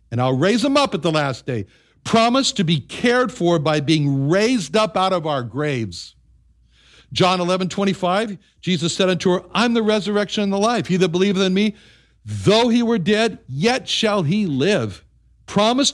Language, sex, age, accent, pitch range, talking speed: English, male, 60-79, American, 155-210 Hz, 190 wpm